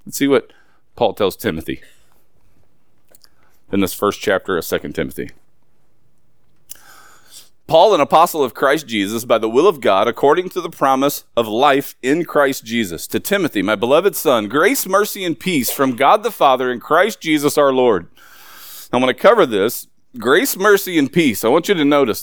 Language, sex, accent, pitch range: English, male, American, 125-180 Hz